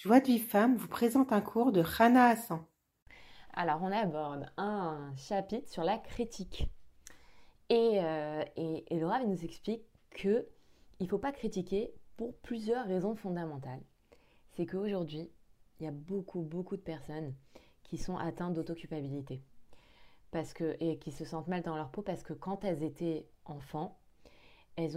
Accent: French